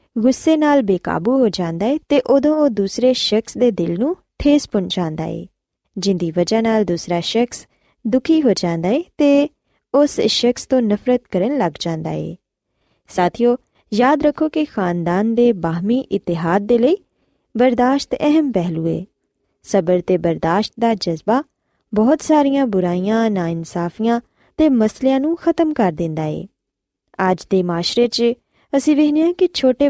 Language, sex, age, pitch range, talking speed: Punjabi, female, 20-39, 185-280 Hz, 145 wpm